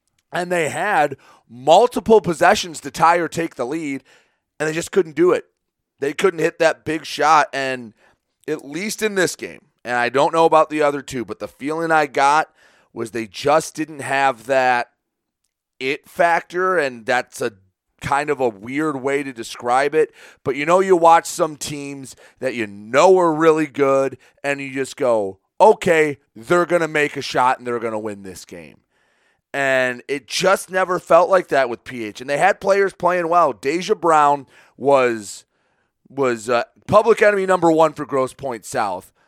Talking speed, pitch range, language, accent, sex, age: 185 wpm, 125-165 Hz, English, American, male, 30-49